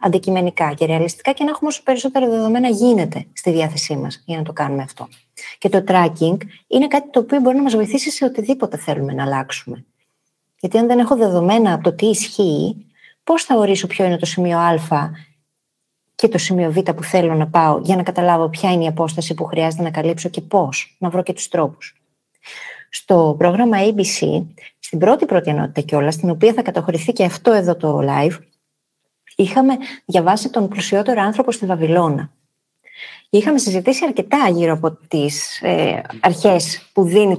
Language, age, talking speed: Greek, 20-39, 180 wpm